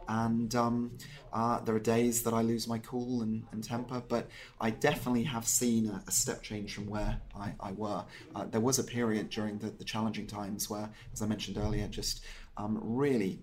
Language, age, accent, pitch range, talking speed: English, 30-49, British, 105-120 Hz, 205 wpm